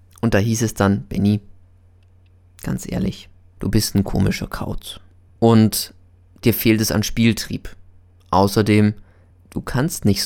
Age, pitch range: 20-39, 90-105 Hz